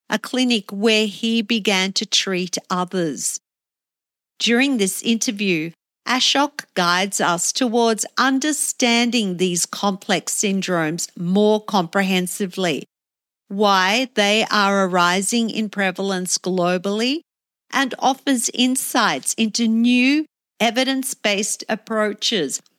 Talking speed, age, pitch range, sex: 90 wpm, 50-69, 190-235 Hz, female